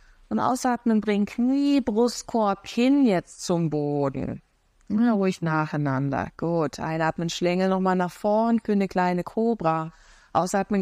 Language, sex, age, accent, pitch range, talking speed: German, female, 20-39, German, 175-205 Hz, 135 wpm